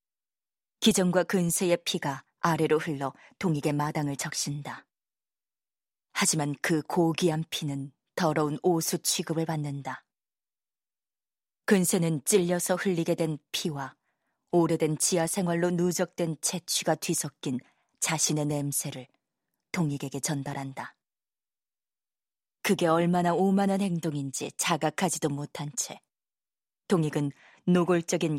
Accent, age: native, 20-39